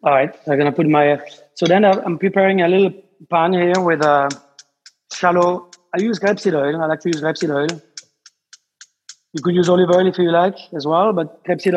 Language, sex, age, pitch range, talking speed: English, male, 30-49, 150-185 Hz, 205 wpm